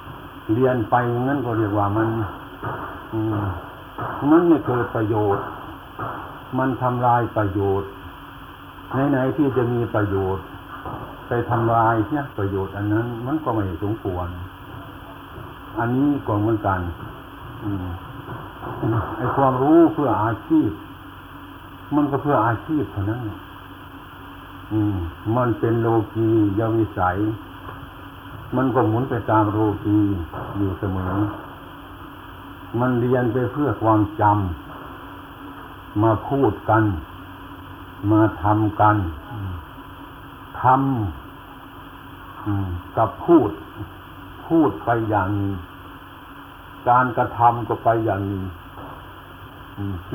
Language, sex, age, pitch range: Thai, male, 60-79, 95-125 Hz